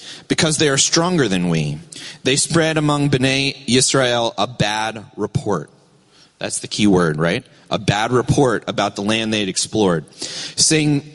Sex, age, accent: male, 30-49, American